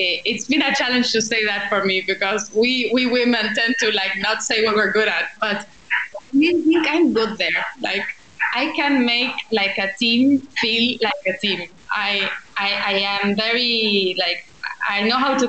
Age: 20-39